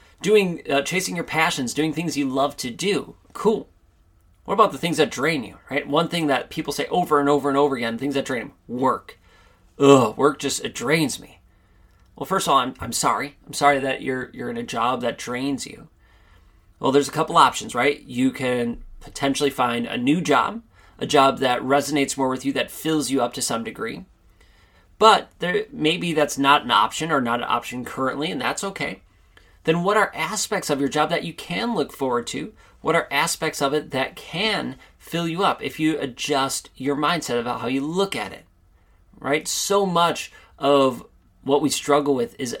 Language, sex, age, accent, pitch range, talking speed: English, male, 30-49, American, 125-155 Hz, 205 wpm